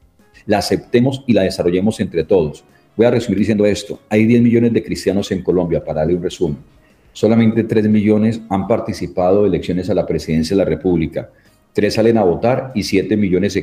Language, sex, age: Spanish, male, 40-59